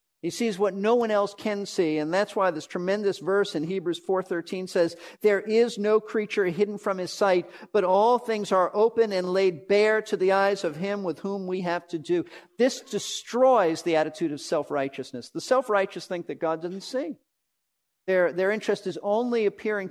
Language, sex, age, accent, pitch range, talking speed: English, male, 50-69, American, 170-215 Hz, 195 wpm